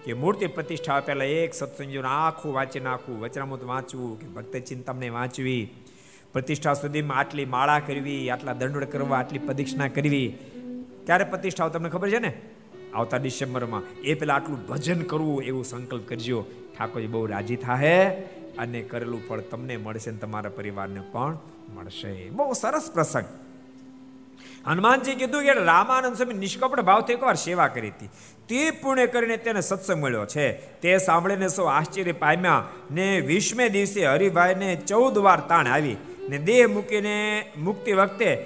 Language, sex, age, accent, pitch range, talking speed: Gujarati, male, 50-69, native, 125-195 Hz, 70 wpm